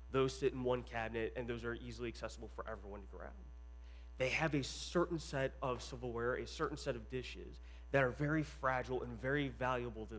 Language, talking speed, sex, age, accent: English, 200 wpm, male, 30-49, American